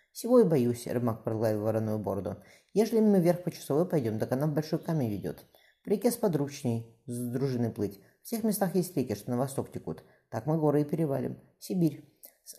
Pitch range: 115-155 Hz